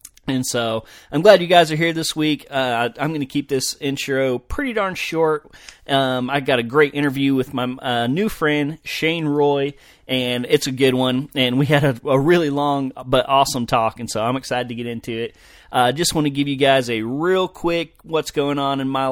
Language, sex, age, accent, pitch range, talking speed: English, male, 30-49, American, 120-145 Hz, 225 wpm